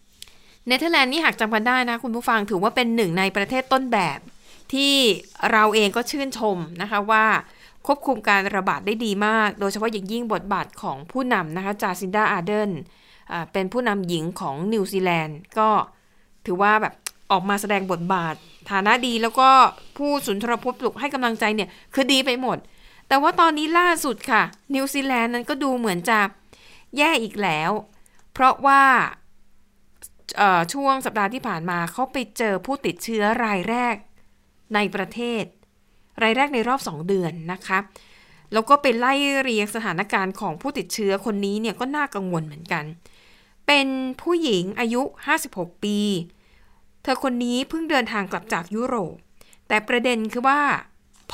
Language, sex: Thai, female